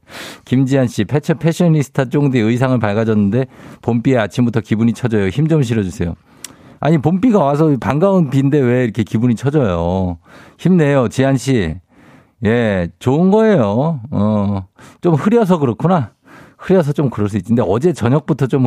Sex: male